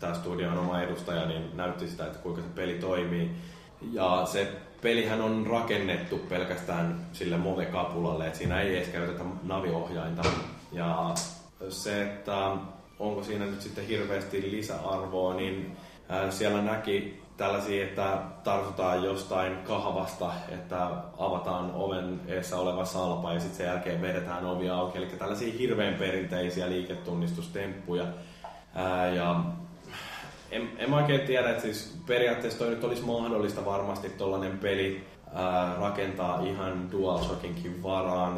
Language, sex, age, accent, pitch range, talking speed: Finnish, male, 20-39, native, 85-95 Hz, 125 wpm